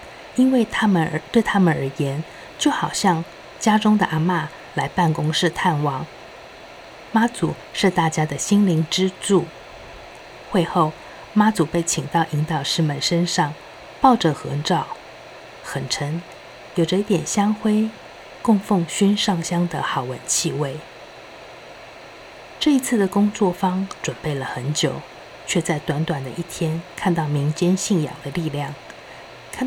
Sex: female